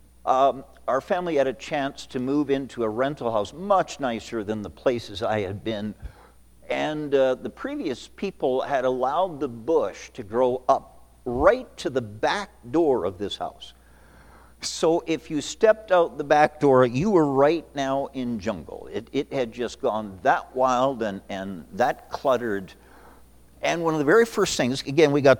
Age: 50-69